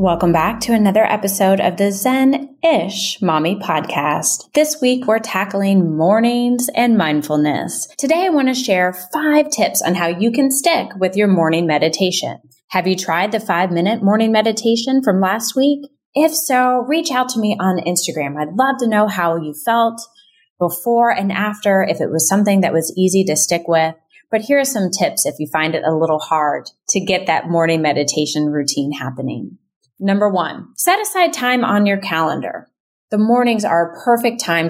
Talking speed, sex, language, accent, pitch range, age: 180 wpm, female, English, American, 165-240 Hz, 20-39